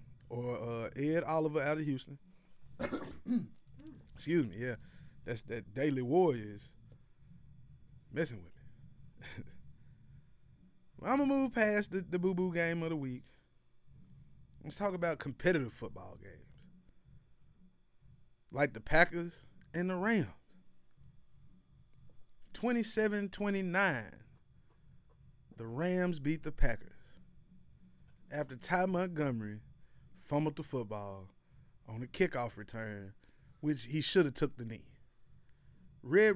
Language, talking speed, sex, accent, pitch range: English, 105 wpm, male, American, 125-190 Hz